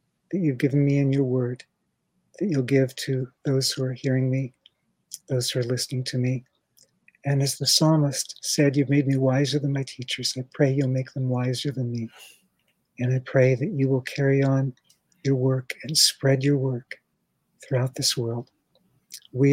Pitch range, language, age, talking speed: 125-140 Hz, English, 60-79, 185 wpm